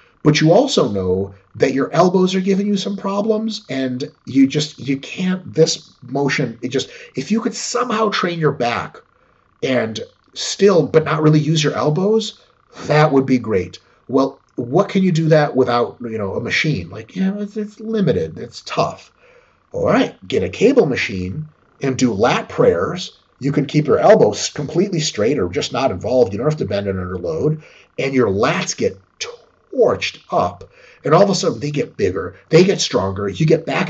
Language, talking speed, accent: English, 190 wpm, American